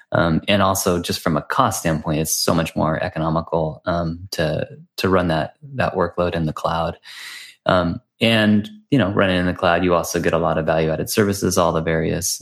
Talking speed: 210 wpm